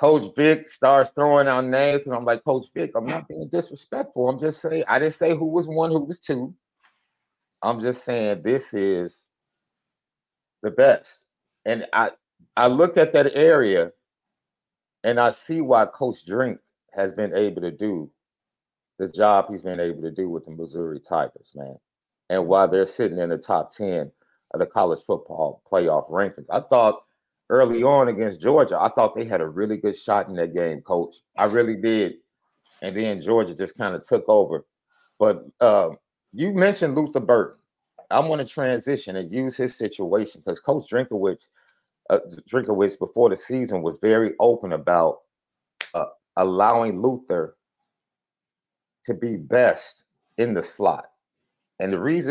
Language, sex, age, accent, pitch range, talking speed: English, male, 40-59, American, 100-160 Hz, 170 wpm